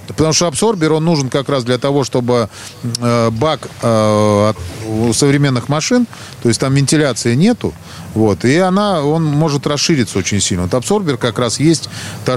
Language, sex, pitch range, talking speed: Russian, male, 110-160 Hz, 155 wpm